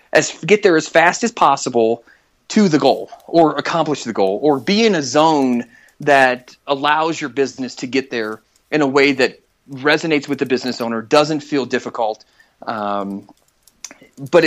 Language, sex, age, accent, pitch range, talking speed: English, male, 30-49, American, 130-175 Hz, 165 wpm